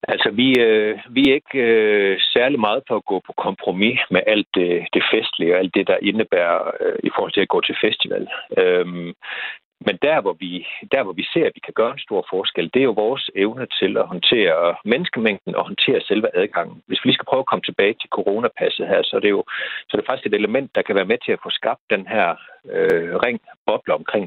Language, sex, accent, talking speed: Danish, male, native, 235 wpm